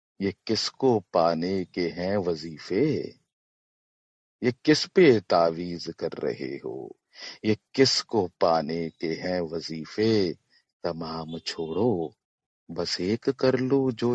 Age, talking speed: 50-69, 110 wpm